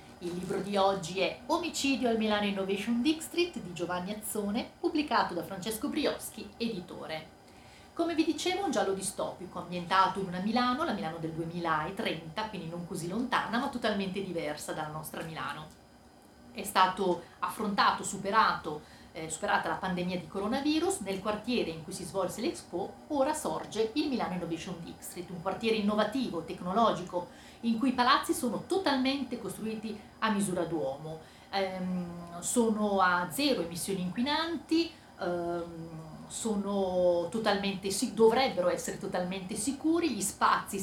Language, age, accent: Italian, 40-59, native